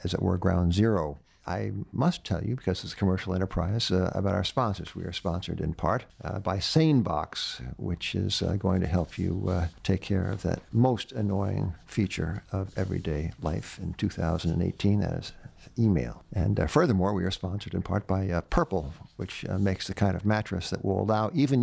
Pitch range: 95-110 Hz